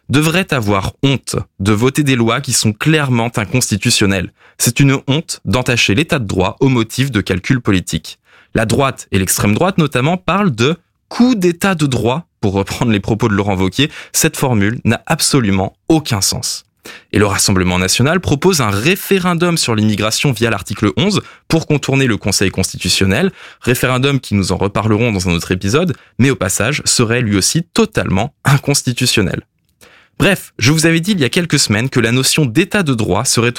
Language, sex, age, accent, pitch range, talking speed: French, male, 20-39, French, 105-145 Hz, 175 wpm